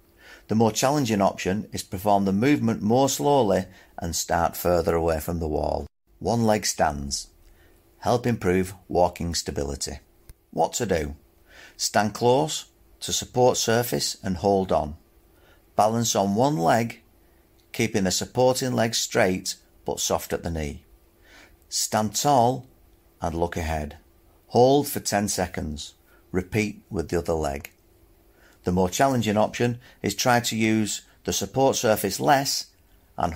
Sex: male